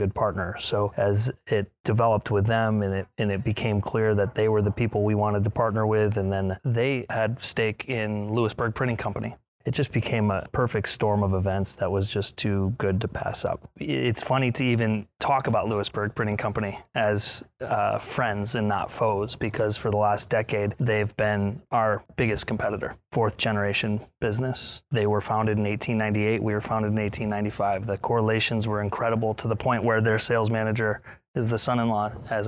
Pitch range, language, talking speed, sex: 105-115 Hz, English, 185 wpm, male